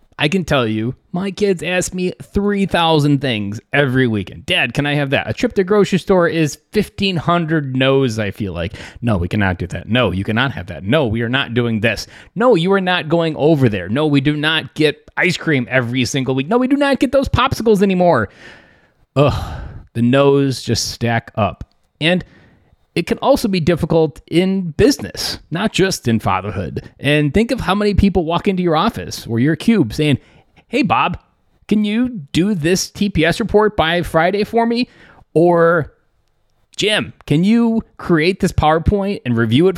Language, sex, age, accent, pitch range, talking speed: English, male, 30-49, American, 120-185 Hz, 185 wpm